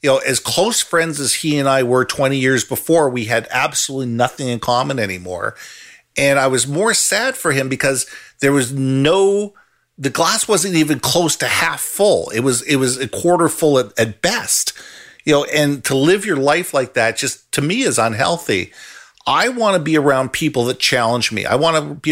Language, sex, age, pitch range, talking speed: English, male, 50-69, 125-155 Hz, 205 wpm